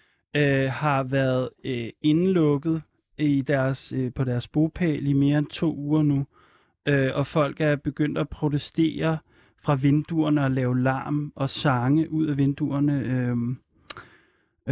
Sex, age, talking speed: male, 30-49, 145 wpm